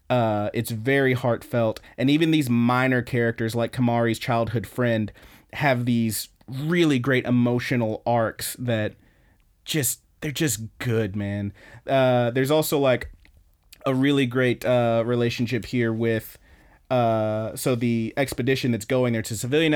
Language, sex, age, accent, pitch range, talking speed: English, male, 30-49, American, 105-125 Hz, 135 wpm